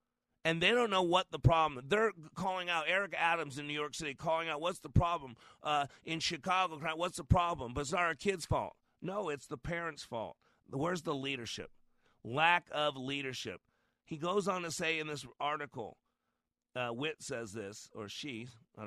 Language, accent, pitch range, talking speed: English, American, 135-170 Hz, 190 wpm